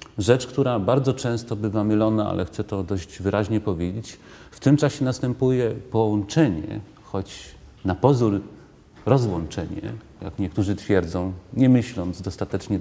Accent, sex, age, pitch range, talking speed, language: native, male, 40-59, 100-120 Hz, 125 wpm, Polish